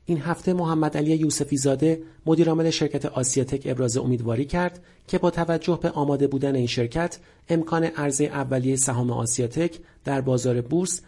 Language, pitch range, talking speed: Persian, 130-165 Hz, 150 wpm